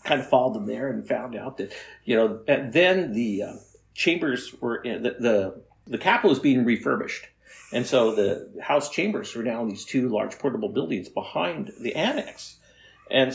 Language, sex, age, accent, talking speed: English, male, 50-69, American, 190 wpm